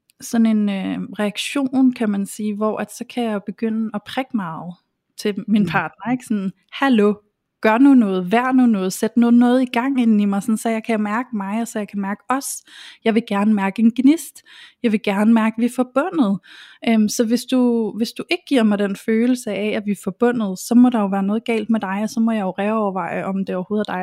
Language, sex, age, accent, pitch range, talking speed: Danish, female, 20-39, native, 205-240 Hz, 245 wpm